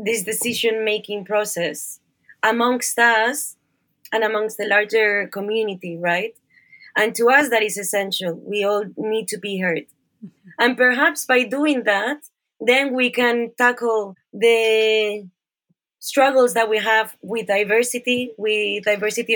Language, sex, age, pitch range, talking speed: English, female, 20-39, 205-240 Hz, 125 wpm